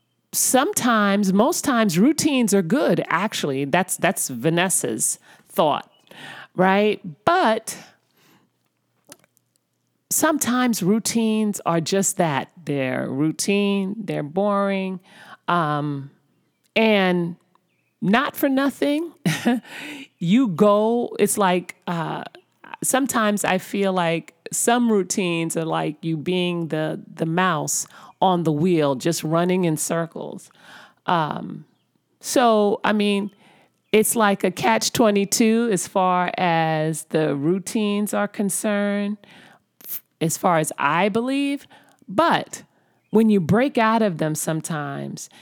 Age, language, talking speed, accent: 40-59, English, 105 wpm, American